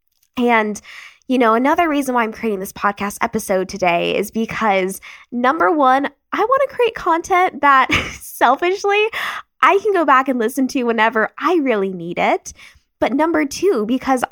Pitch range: 205-295 Hz